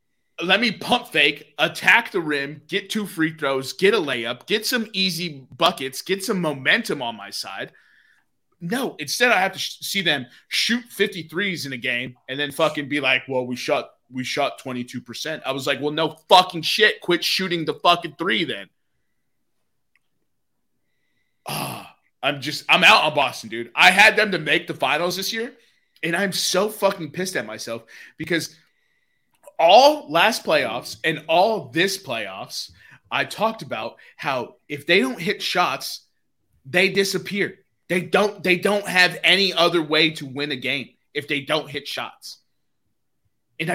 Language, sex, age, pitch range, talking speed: English, male, 20-39, 145-200 Hz, 170 wpm